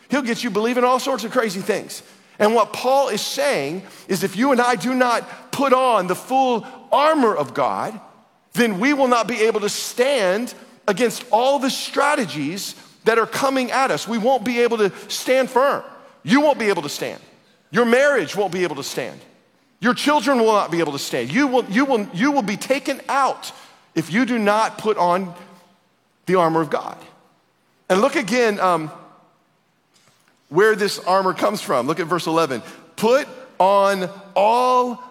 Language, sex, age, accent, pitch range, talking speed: English, male, 40-59, American, 190-265 Hz, 185 wpm